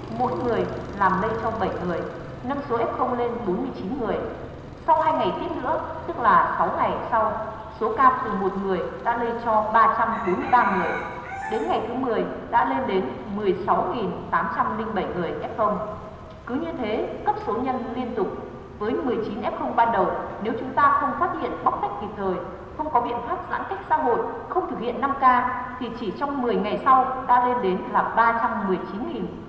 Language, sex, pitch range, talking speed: Vietnamese, female, 215-265 Hz, 185 wpm